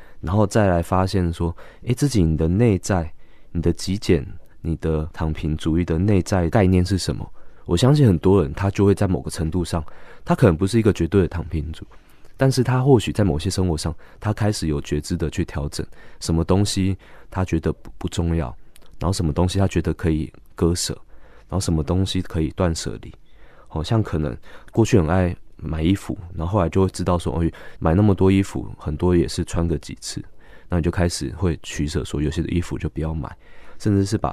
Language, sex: Chinese, male